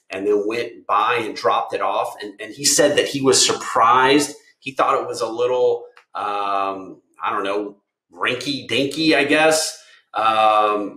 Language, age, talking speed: English, 30-49, 170 wpm